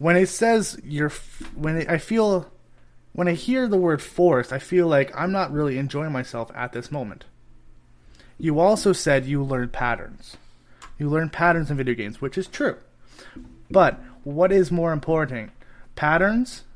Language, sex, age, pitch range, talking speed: English, male, 30-49, 130-170 Hz, 160 wpm